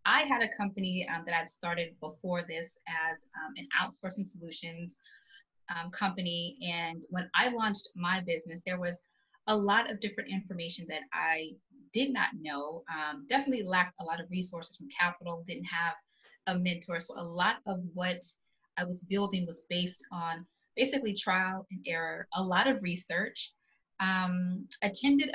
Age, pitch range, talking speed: 20-39, 170-215 Hz, 165 wpm